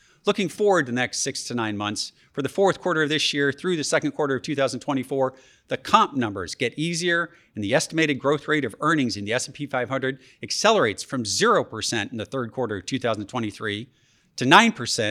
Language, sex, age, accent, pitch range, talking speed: English, male, 40-59, American, 120-150 Hz, 185 wpm